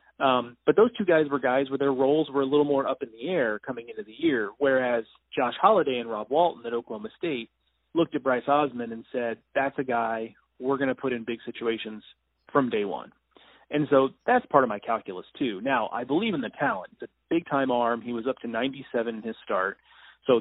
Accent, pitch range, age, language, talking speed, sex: American, 120-145 Hz, 30-49, English, 225 wpm, male